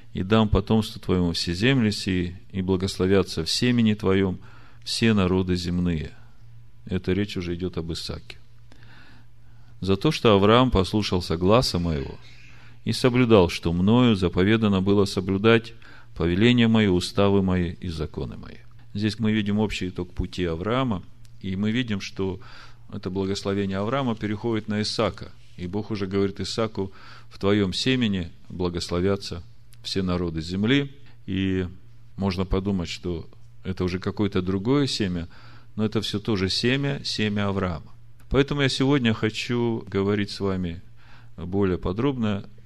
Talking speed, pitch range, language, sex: 135 wpm, 95-115 Hz, Russian, male